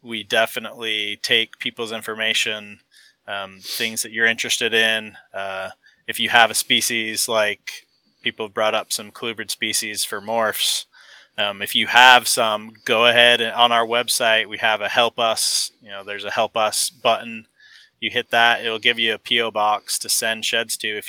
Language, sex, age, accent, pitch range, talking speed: English, male, 20-39, American, 105-115 Hz, 180 wpm